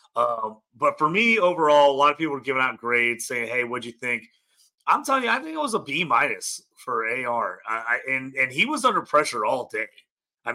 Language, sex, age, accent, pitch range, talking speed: English, male, 30-49, American, 120-150 Hz, 235 wpm